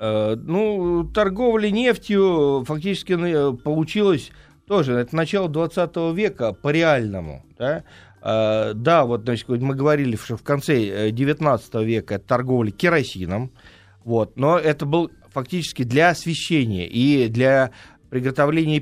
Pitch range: 110-150 Hz